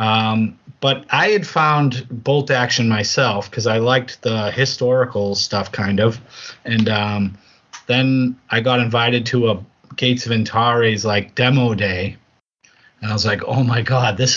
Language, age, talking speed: English, 30-49, 160 wpm